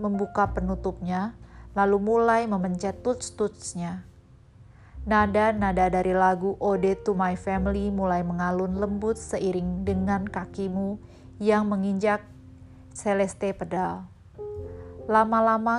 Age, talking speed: 20-39, 100 wpm